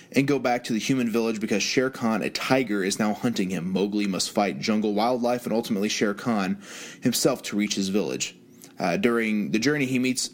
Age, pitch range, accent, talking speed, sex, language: 20-39, 100-135 Hz, American, 210 wpm, male, English